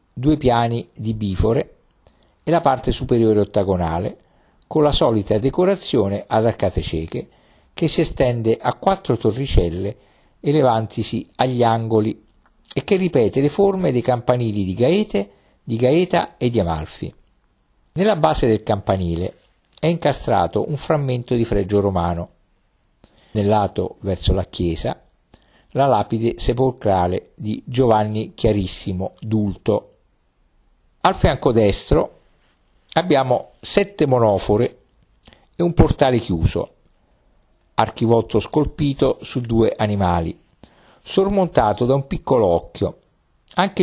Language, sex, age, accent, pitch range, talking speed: Italian, male, 50-69, native, 100-135 Hz, 115 wpm